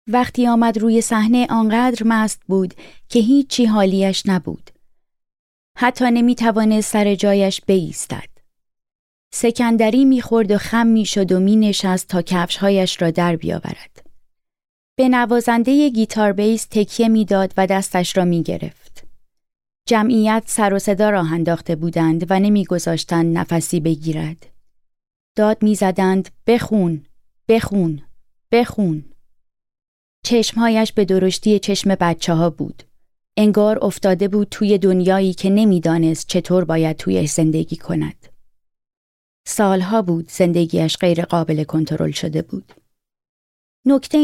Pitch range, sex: 175-225 Hz, female